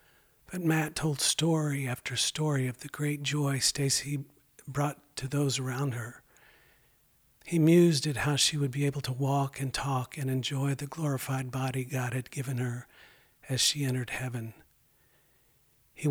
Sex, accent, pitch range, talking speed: male, American, 130-145 Hz, 155 wpm